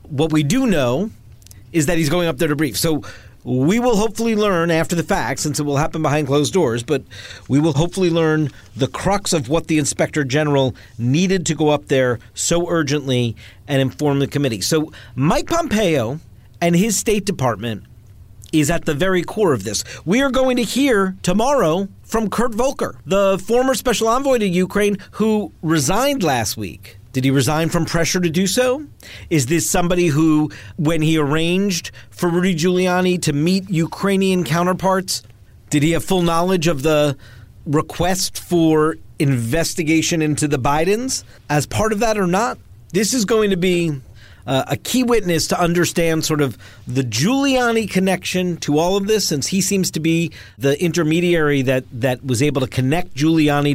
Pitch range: 135-185 Hz